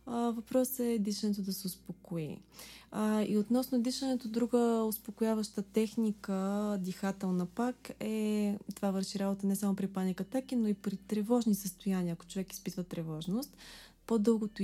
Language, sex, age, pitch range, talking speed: Bulgarian, female, 20-39, 190-220 Hz, 135 wpm